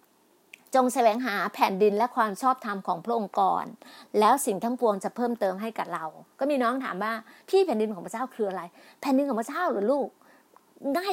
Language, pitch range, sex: Thai, 220-285 Hz, female